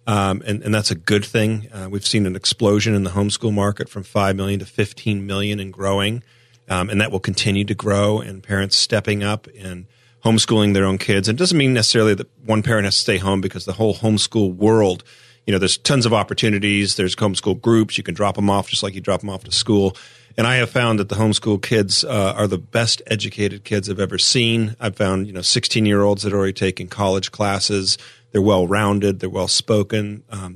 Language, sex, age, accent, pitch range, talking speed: English, male, 40-59, American, 100-120 Hz, 220 wpm